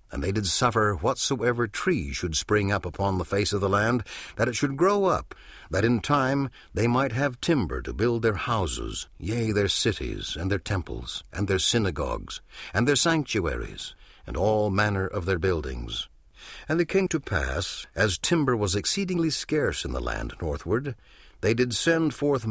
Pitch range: 90-125 Hz